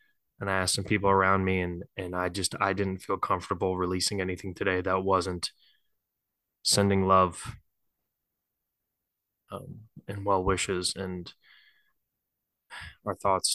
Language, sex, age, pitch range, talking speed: English, male, 20-39, 95-105 Hz, 130 wpm